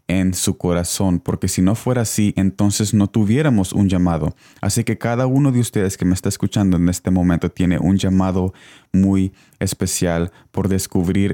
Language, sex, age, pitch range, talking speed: Spanish, male, 20-39, 95-110 Hz, 175 wpm